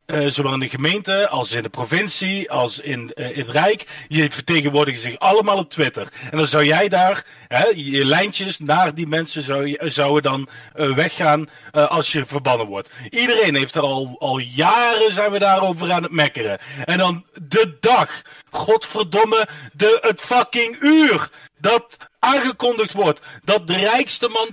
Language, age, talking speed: Dutch, 40-59, 170 wpm